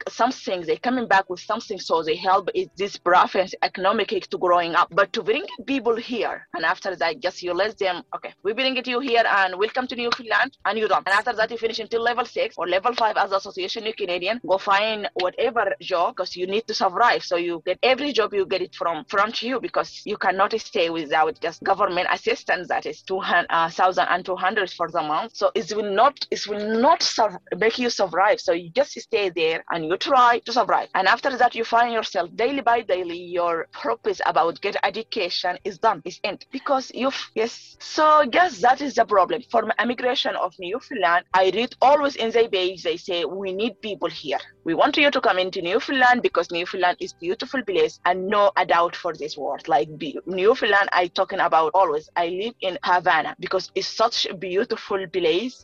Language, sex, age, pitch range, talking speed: English, female, 20-39, 185-250 Hz, 215 wpm